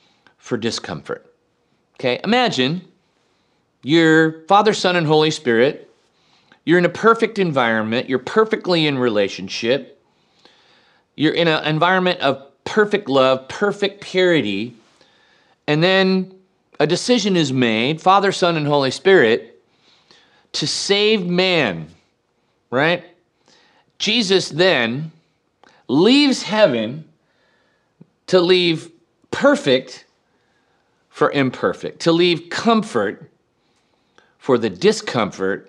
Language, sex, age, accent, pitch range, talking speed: English, male, 40-59, American, 120-185 Hz, 100 wpm